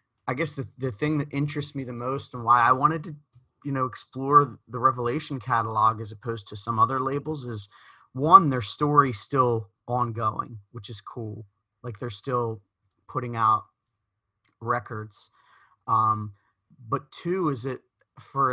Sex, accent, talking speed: male, American, 155 wpm